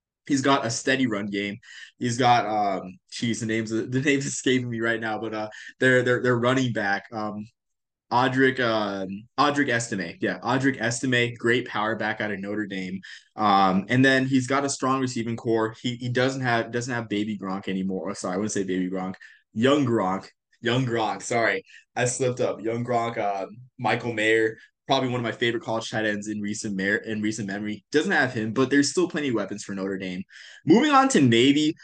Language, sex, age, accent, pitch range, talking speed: English, male, 20-39, American, 105-130 Hz, 205 wpm